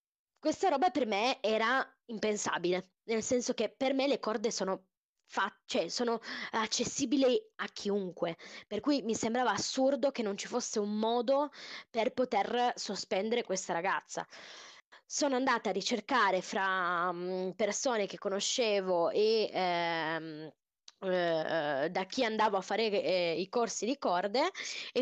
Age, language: 20-39, Italian